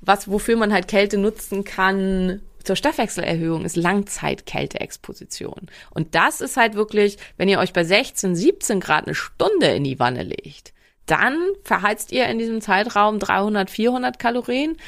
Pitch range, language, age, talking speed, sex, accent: 180-225 Hz, German, 30-49, 155 wpm, female, German